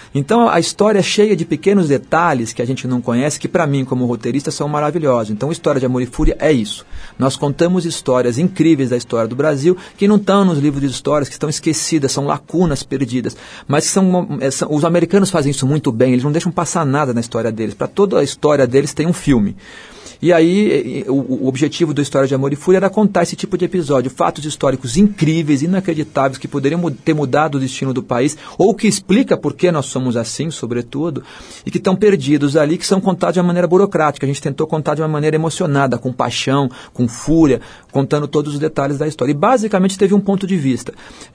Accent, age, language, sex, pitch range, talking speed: Brazilian, 40-59, Portuguese, male, 140-180 Hz, 220 wpm